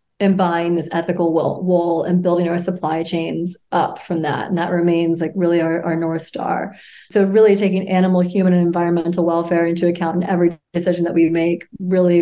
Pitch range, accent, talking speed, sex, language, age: 175-200 Hz, American, 195 wpm, female, English, 30-49